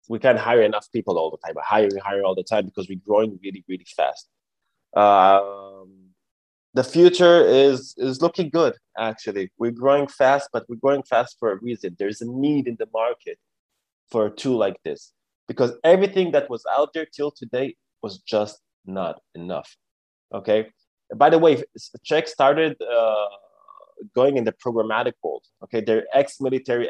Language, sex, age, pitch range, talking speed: English, male, 20-39, 110-140 Hz, 175 wpm